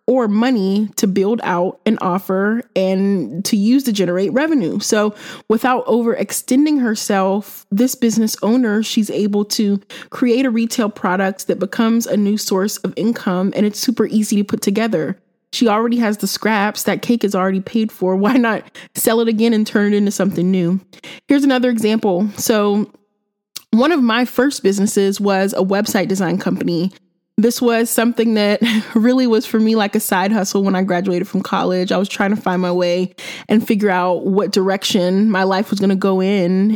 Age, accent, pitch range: 20-39, American, 190-225 Hz